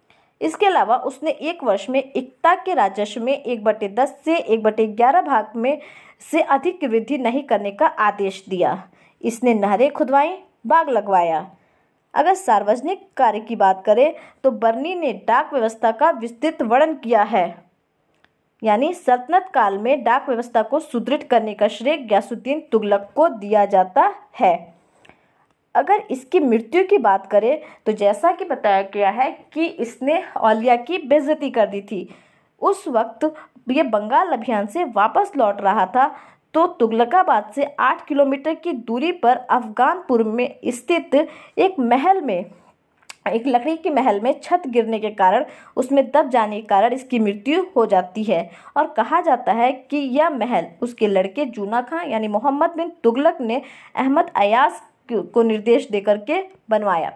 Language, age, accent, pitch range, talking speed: Hindi, 20-39, native, 220-310 Hz, 160 wpm